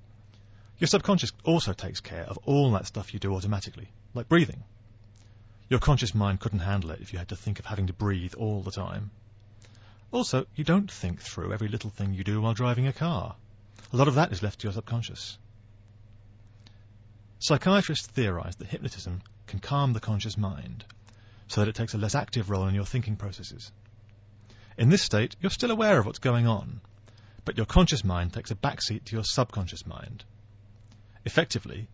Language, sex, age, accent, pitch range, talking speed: English, male, 40-59, British, 105-120 Hz, 185 wpm